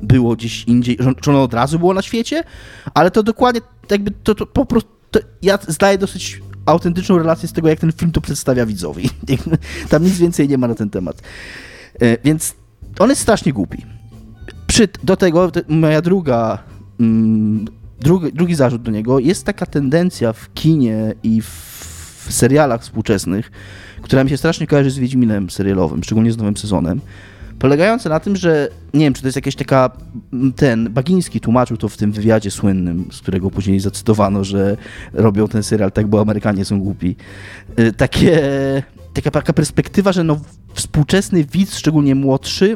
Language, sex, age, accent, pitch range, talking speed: Polish, male, 20-39, native, 105-160 Hz, 160 wpm